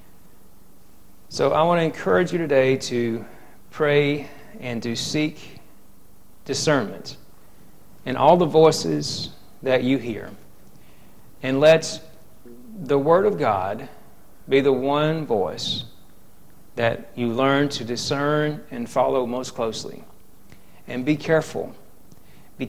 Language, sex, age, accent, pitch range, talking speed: Bengali, male, 40-59, American, 115-145 Hz, 115 wpm